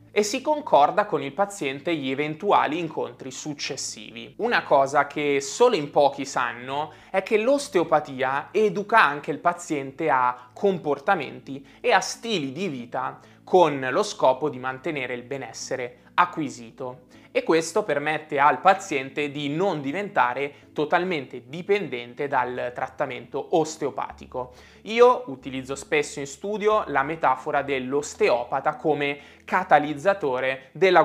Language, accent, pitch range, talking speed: Italian, native, 130-180 Hz, 120 wpm